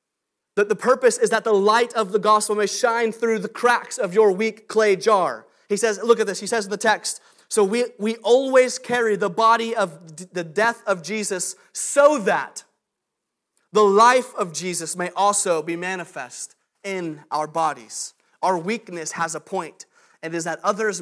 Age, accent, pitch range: 30-49, American, 170-220 Hz